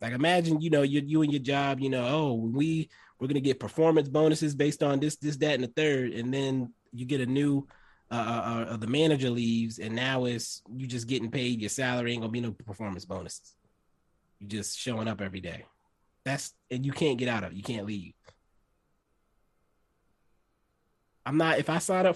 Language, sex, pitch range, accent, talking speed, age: English, male, 110-140 Hz, American, 205 wpm, 20-39